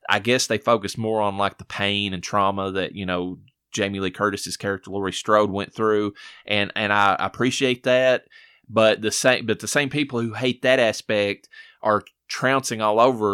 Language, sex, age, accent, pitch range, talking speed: English, male, 20-39, American, 95-110 Hz, 180 wpm